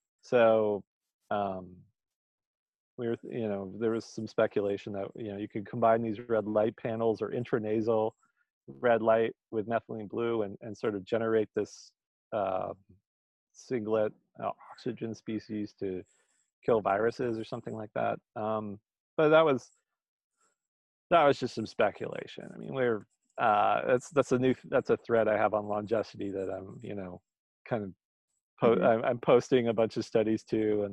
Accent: American